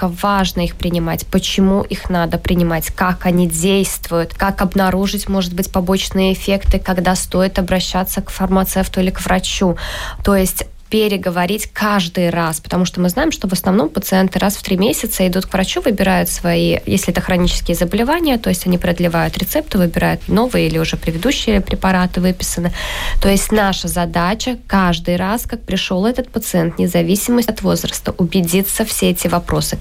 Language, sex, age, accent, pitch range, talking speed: Russian, female, 20-39, native, 180-205 Hz, 160 wpm